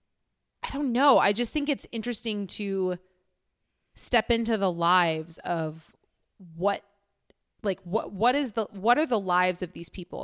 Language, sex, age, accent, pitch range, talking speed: English, female, 20-39, American, 180-230 Hz, 160 wpm